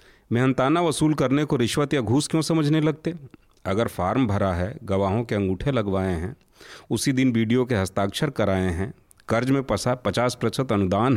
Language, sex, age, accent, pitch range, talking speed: Hindi, male, 40-59, native, 110-145 Hz, 170 wpm